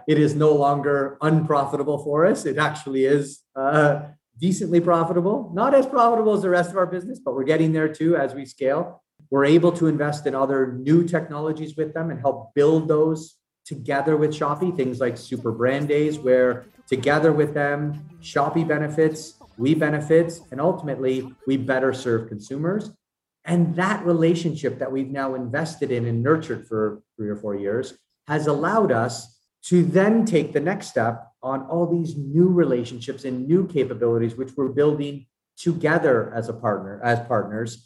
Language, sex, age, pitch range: Thai, male, 30-49, 125-160 Hz